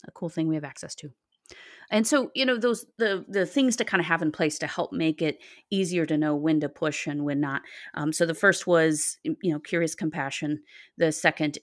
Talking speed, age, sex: 230 wpm, 30-49, female